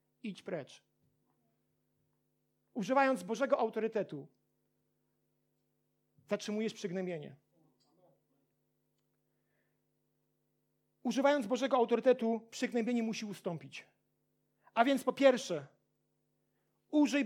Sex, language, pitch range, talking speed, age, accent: male, Polish, 210-270 Hz, 65 wpm, 40-59, native